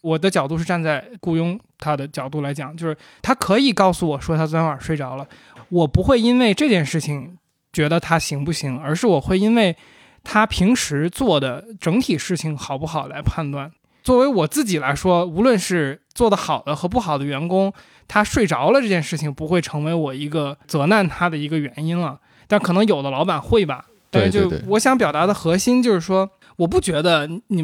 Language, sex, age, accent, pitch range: Chinese, male, 20-39, native, 150-200 Hz